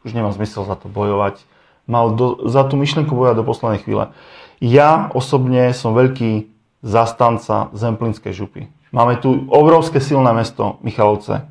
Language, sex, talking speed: Slovak, male, 145 wpm